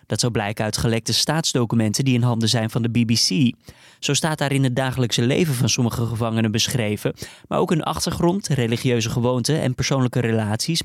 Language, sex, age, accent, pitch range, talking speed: Dutch, male, 20-39, Dutch, 115-145 Hz, 185 wpm